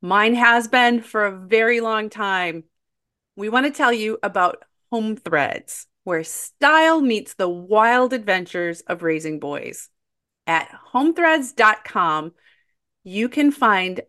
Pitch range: 180-250 Hz